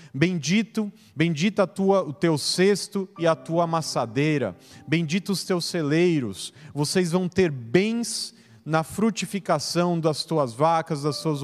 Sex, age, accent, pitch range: male, 30-49, Brazilian, 145-180 Hz